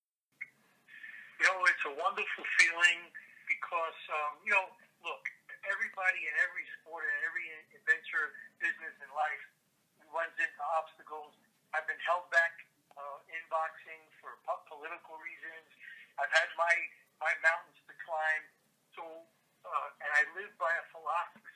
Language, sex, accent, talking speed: English, male, American, 135 wpm